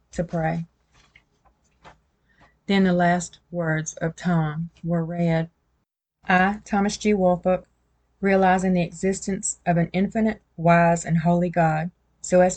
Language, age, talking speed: English, 30-49, 125 wpm